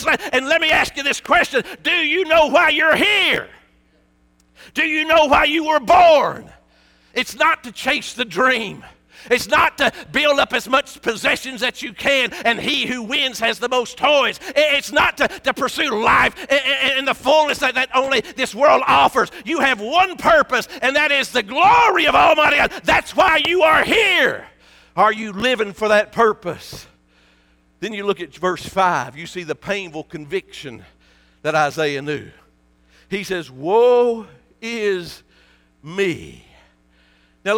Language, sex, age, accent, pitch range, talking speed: English, male, 50-69, American, 175-280 Hz, 170 wpm